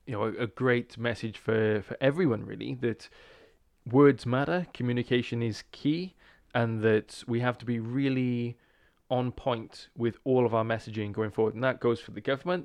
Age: 20-39